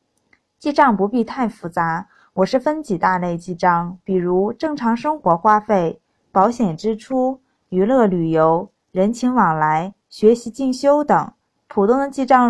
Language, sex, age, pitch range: Chinese, female, 20-39, 190-255 Hz